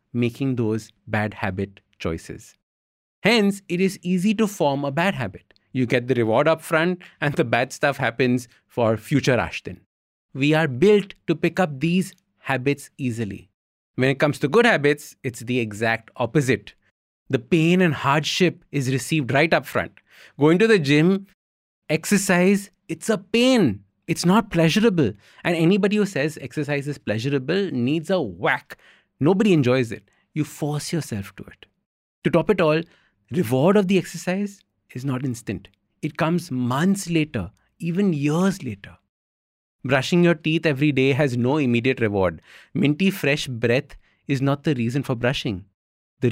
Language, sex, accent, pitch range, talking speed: English, male, Indian, 115-170 Hz, 160 wpm